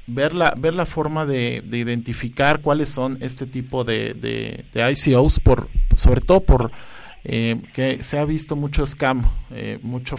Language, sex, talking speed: Spanish, male, 170 wpm